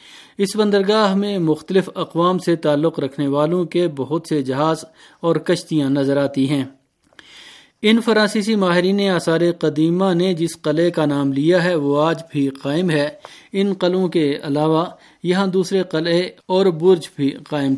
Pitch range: 145-180 Hz